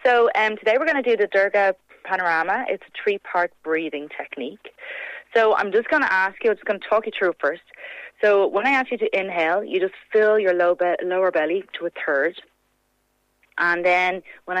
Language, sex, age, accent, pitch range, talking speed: English, female, 30-49, Irish, 165-215 Hz, 205 wpm